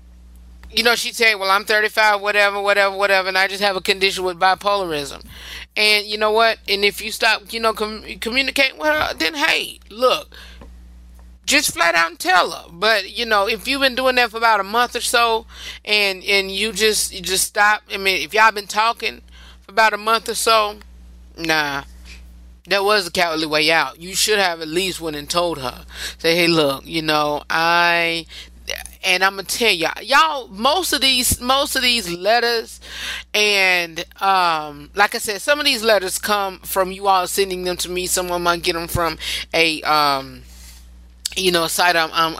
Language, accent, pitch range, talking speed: English, American, 160-215 Hz, 200 wpm